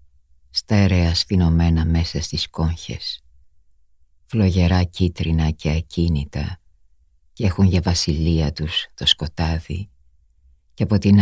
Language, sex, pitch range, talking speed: Greek, female, 75-95 Hz, 100 wpm